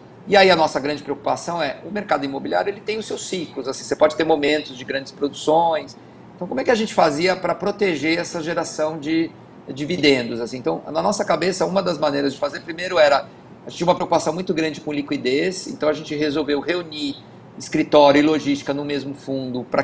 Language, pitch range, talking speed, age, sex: Portuguese, 140-170 Hz, 210 wpm, 40-59, male